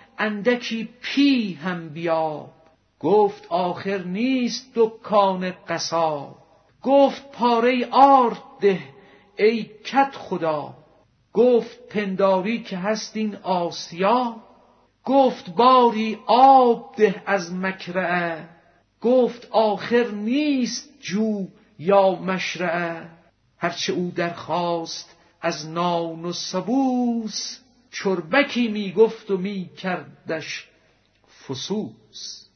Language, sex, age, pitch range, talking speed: Persian, male, 50-69, 165-230 Hz, 85 wpm